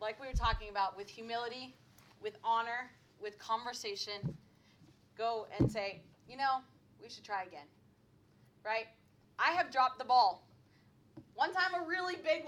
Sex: female